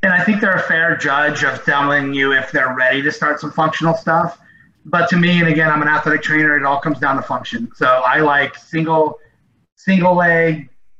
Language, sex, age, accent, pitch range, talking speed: English, male, 30-49, American, 140-175 Hz, 215 wpm